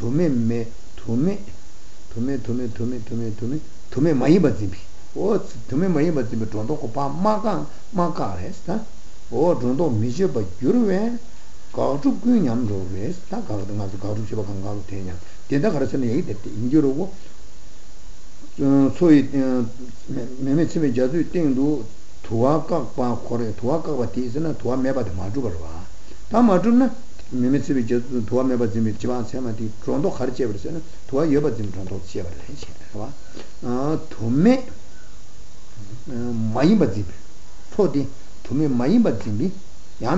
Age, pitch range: 60-79, 105-150 Hz